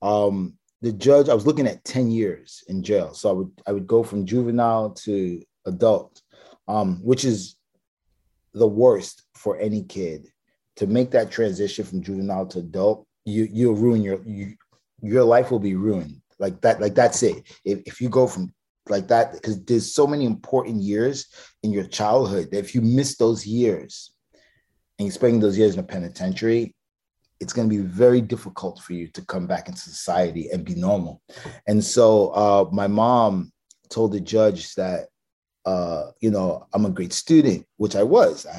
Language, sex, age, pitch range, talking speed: English, male, 30-49, 95-120 Hz, 185 wpm